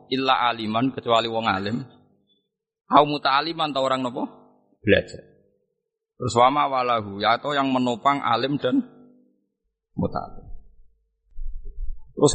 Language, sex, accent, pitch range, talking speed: Indonesian, male, native, 105-170 Hz, 110 wpm